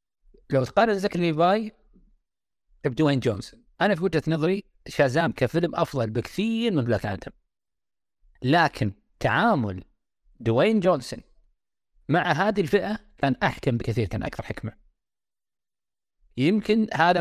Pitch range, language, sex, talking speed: 125-175 Hz, Arabic, male, 110 wpm